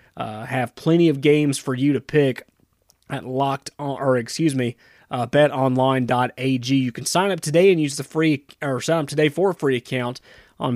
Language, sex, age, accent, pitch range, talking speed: English, male, 30-49, American, 130-170 Hz, 195 wpm